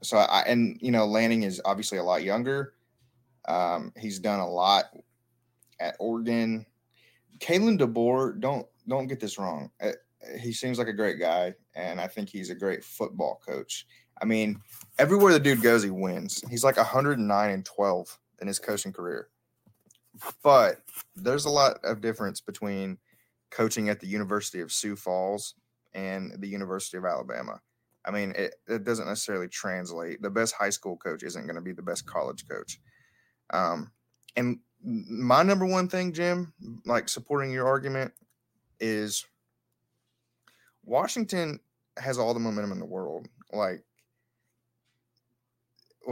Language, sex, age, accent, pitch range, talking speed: English, male, 20-39, American, 100-120 Hz, 150 wpm